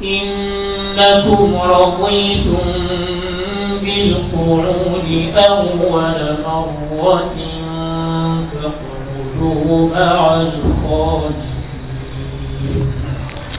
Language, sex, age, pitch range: French, male, 40-59, 155-195 Hz